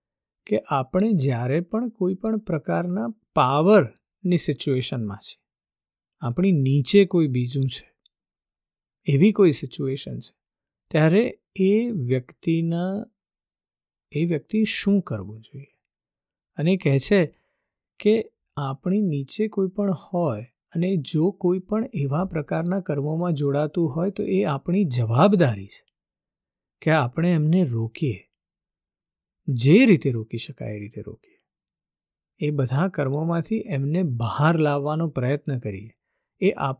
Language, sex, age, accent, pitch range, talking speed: Gujarati, male, 50-69, native, 135-185 Hz, 100 wpm